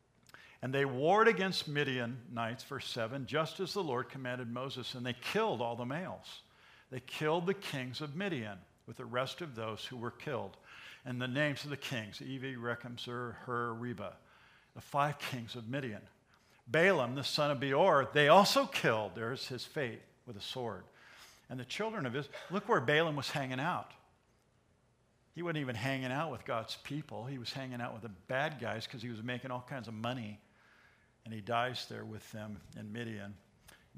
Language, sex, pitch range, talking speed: English, male, 115-140 Hz, 190 wpm